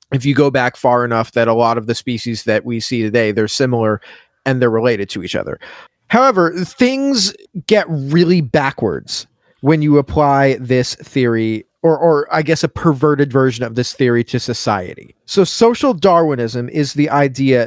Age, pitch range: 30-49, 125-155 Hz